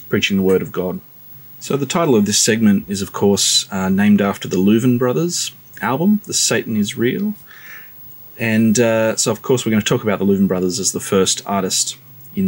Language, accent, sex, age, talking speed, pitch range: English, Australian, male, 30-49, 205 wpm, 95-130 Hz